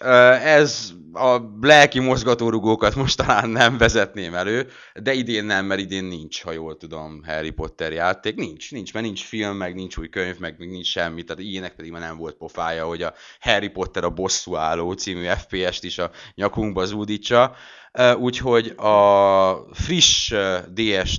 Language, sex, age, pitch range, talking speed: Hungarian, male, 30-49, 85-110 Hz, 160 wpm